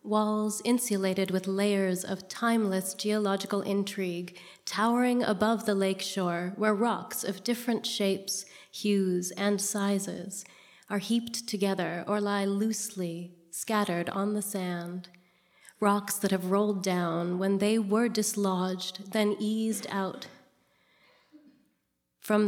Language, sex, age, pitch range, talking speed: English, female, 30-49, 185-210 Hz, 115 wpm